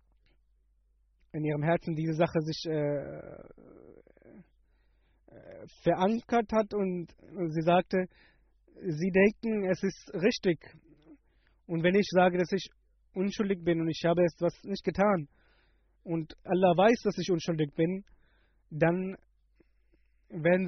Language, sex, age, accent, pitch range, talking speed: German, male, 20-39, German, 160-190 Hz, 115 wpm